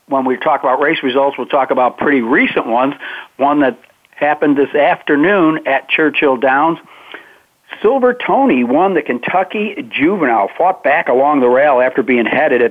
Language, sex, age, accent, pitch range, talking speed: English, male, 60-79, American, 125-150 Hz, 165 wpm